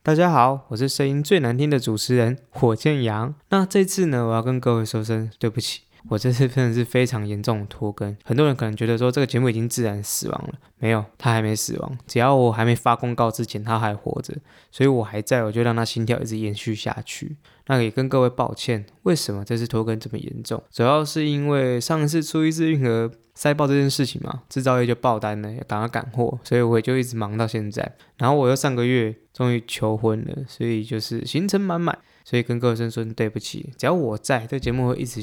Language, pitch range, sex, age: Chinese, 115-135 Hz, male, 20-39